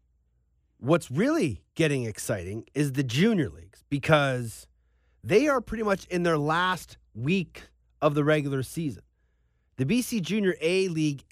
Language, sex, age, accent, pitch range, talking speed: English, male, 30-49, American, 120-185 Hz, 140 wpm